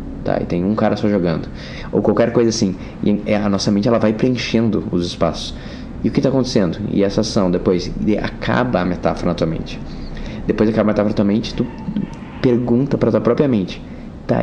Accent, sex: Brazilian, male